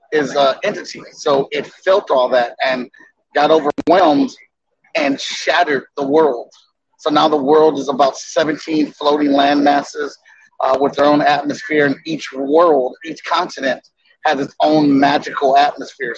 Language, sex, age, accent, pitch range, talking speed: English, male, 30-49, American, 140-160 Hz, 150 wpm